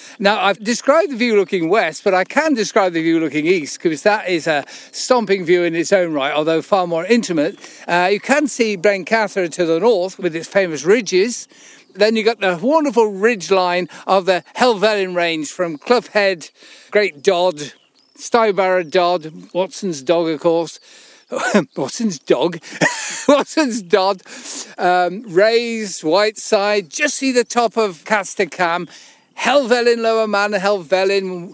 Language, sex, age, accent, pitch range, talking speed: English, male, 50-69, British, 180-240 Hz, 150 wpm